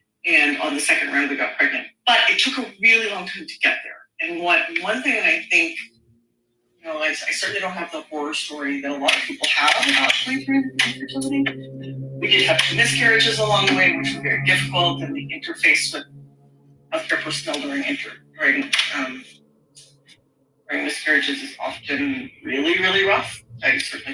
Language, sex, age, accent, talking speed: English, female, 30-49, American, 180 wpm